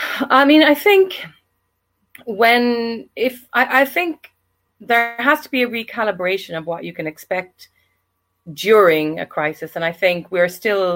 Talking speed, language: 155 wpm, English